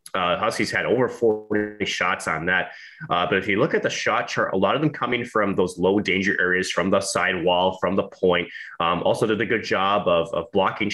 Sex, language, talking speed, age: male, English, 235 wpm, 30-49